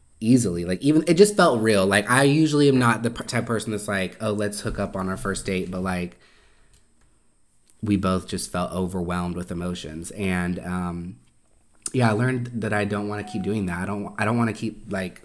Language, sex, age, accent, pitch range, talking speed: English, male, 20-39, American, 95-115 Hz, 220 wpm